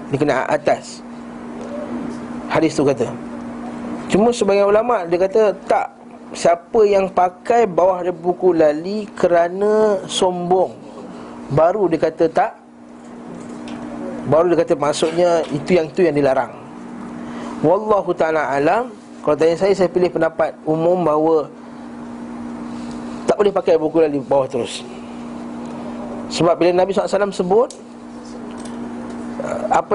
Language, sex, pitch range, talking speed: Malay, male, 115-185 Hz, 115 wpm